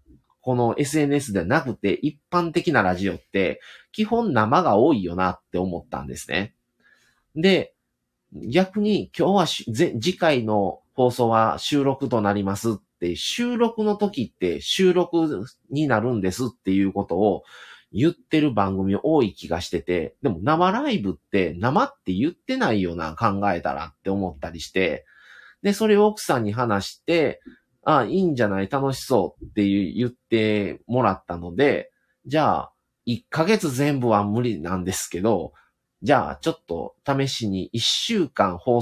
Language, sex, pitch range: Japanese, male, 100-150 Hz